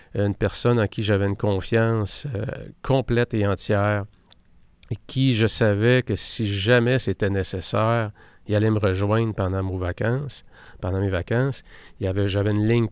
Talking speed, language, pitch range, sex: 165 wpm, French, 100-120 Hz, male